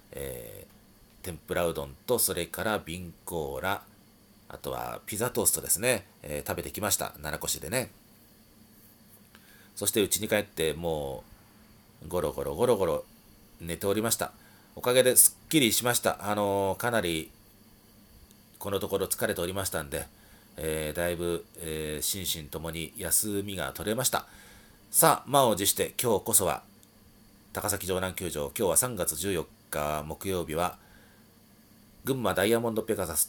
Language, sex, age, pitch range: Japanese, male, 40-59, 85-110 Hz